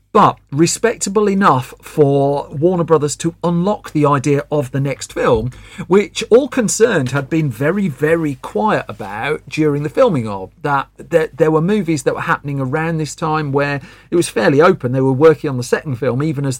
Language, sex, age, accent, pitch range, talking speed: English, male, 40-59, British, 130-170 Hz, 185 wpm